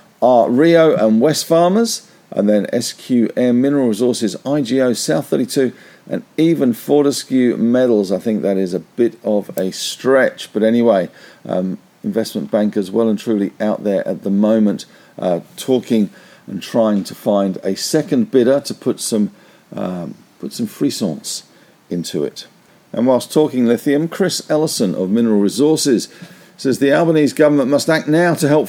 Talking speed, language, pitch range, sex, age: 155 wpm, English, 115-155 Hz, male, 50-69